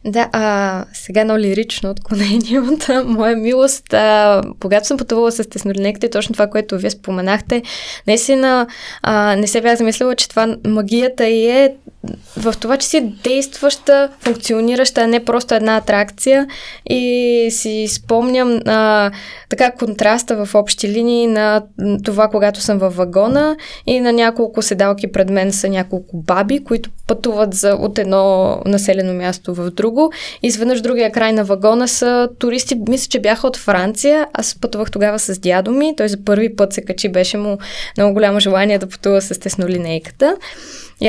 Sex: female